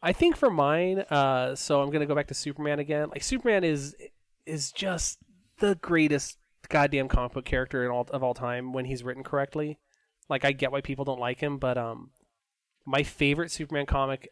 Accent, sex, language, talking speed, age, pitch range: American, male, English, 195 wpm, 20-39, 125-150 Hz